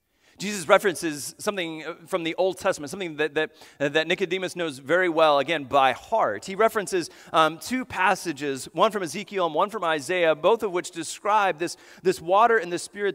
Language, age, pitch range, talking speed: English, 30-49, 155-230 Hz, 185 wpm